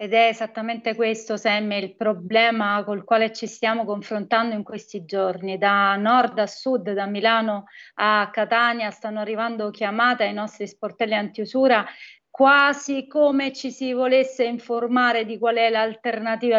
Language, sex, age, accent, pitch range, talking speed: Italian, female, 30-49, native, 200-235 Hz, 145 wpm